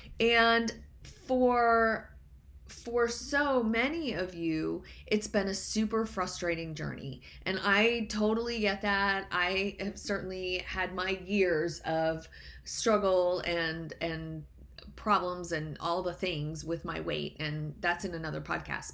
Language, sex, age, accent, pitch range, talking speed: English, female, 30-49, American, 170-220 Hz, 130 wpm